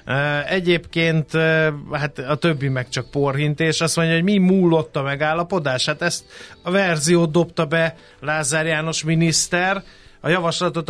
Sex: male